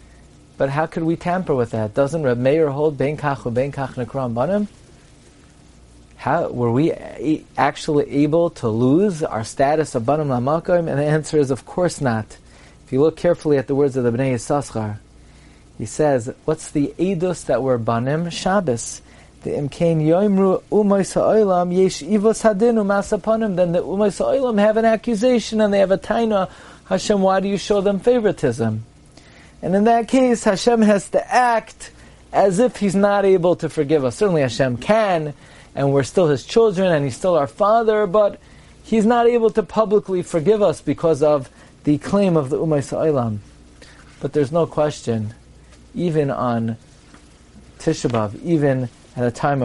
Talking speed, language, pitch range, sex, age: 170 wpm, English, 125-190 Hz, male, 40-59